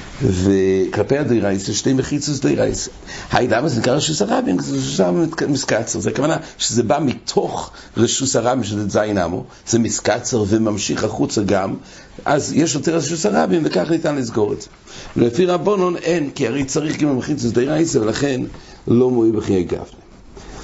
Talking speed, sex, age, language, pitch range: 170 wpm, male, 60-79, English, 110-145 Hz